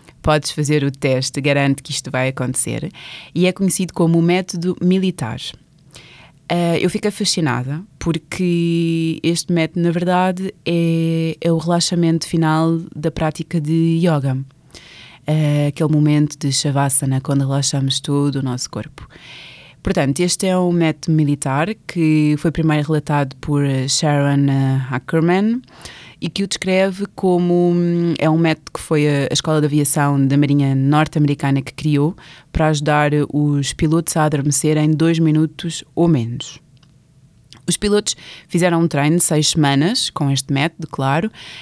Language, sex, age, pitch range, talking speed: Portuguese, female, 20-39, 145-170 Hz, 145 wpm